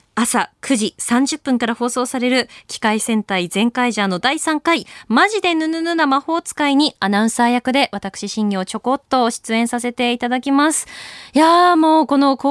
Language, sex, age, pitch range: Japanese, female, 20-39, 190-270 Hz